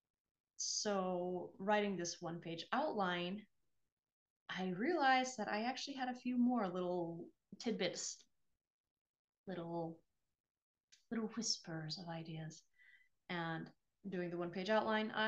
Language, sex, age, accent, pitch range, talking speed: English, female, 20-39, American, 180-245 Hz, 100 wpm